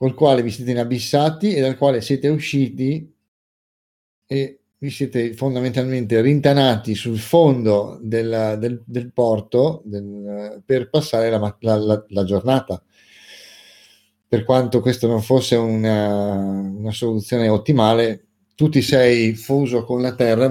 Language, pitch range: Italian, 105-135 Hz